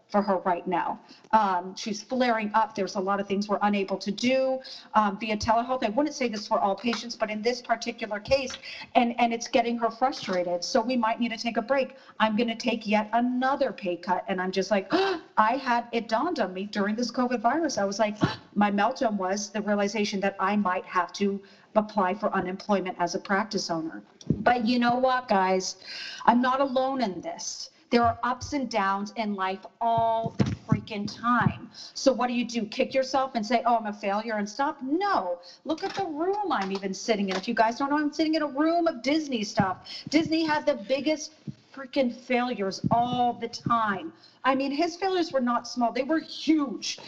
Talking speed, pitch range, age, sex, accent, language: 210 wpm, 205-270 Hz, 40-59, female, American, English